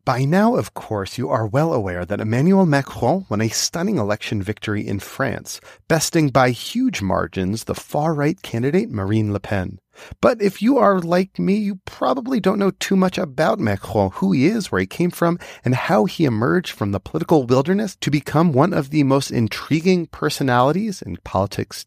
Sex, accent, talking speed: male, American, 185 wpm